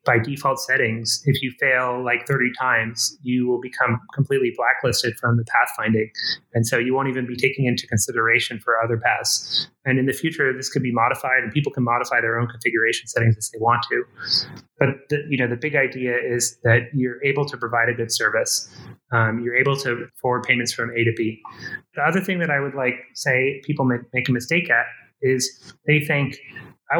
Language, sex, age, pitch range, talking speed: English, male, 30-49, 120-140 Hz, 205 wpm